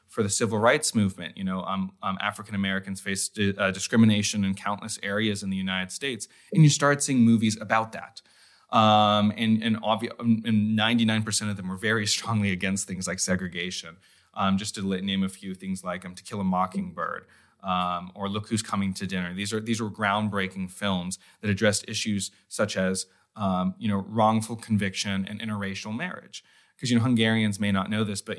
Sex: male